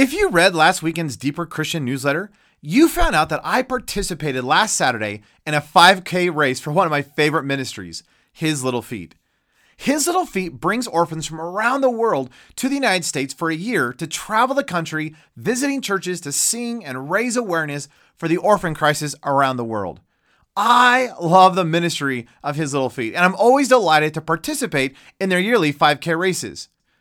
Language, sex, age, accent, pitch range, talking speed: English, male, 30-49, American, 145-195 Hz, 180 wpm